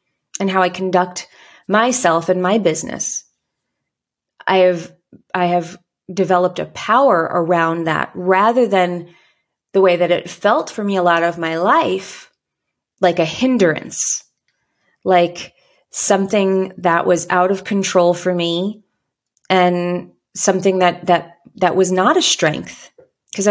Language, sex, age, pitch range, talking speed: English, female, 30-49, 175-205 Hz, 135 wpm